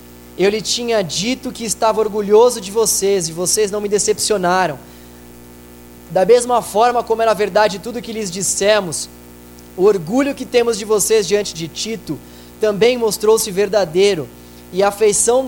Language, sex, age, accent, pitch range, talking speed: Portuguese, male, 20-39, Brazilian, 175-220 Hz, 155 wpm